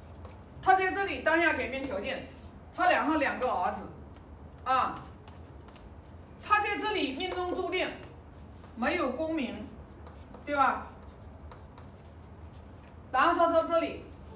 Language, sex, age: Chinese, female, 40-59